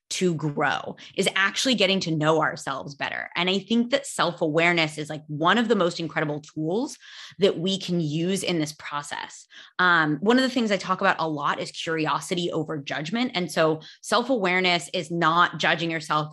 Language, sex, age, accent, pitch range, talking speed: English, female, 20-39, American, 155-200 Hz, 185 wpm